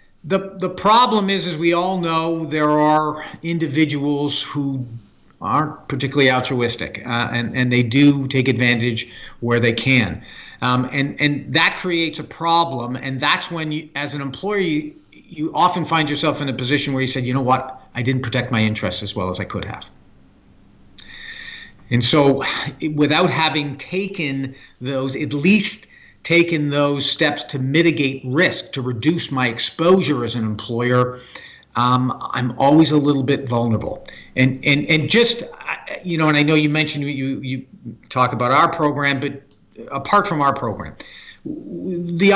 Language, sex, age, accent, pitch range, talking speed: English, male, 50-69, American, 125-160 Hz, 160 wpm